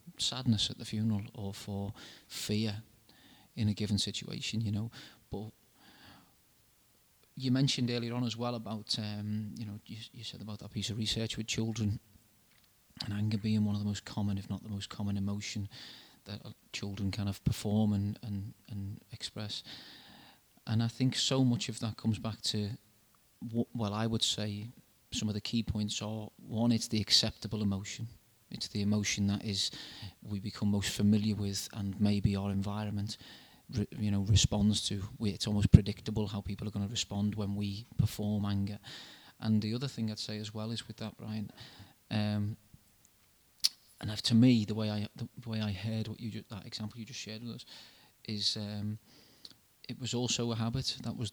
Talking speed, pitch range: 185 wpm, 105-115 Hz